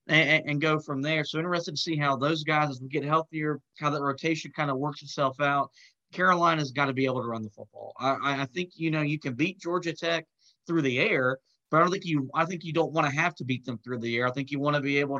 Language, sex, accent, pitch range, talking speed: English, male, American, 135-155 Hz, 275 wpm